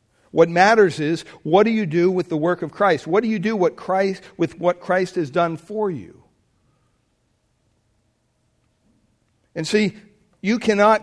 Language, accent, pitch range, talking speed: English, American, 160-215 Hz, 150 wpm